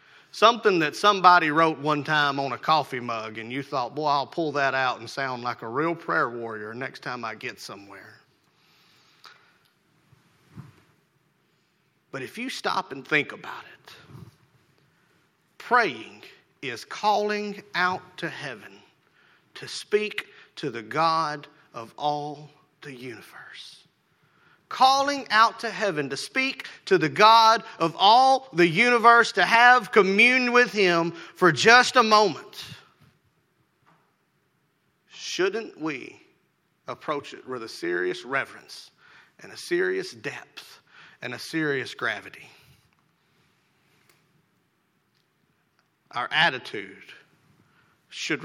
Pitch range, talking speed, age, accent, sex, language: 140-225 Hz, 115 wpm, 40-59, American, male, English